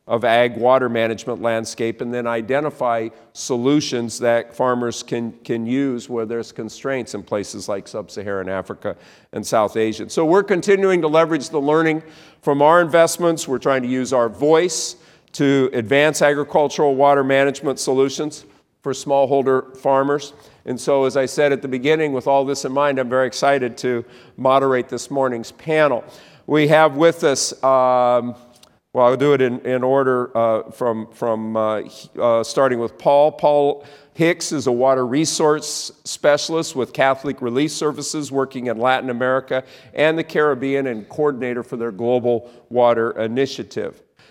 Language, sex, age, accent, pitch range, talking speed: English, male, 50-69, American, 120-145 Hz, 155 wpm